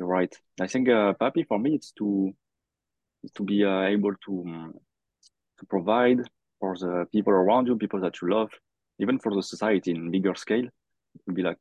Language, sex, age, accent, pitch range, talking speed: English, male, 30-49, French, 90-110 Hz, 190 wpm